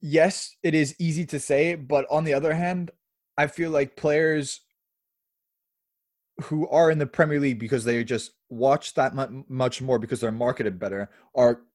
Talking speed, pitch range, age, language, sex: 170 wpm, 105-130 Hz, 20-39, English, male